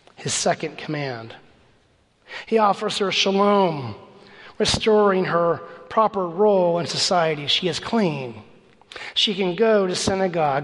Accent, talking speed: American, 115 wpm